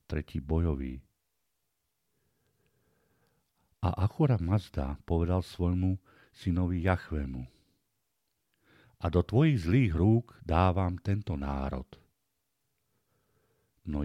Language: Slovak